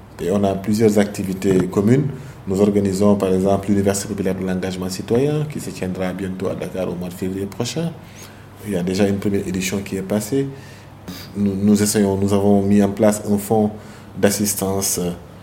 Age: 30-49